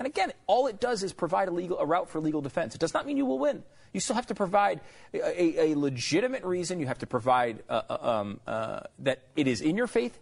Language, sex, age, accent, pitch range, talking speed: English, male, 30-49, American, 160-260 Hz, 260 wpm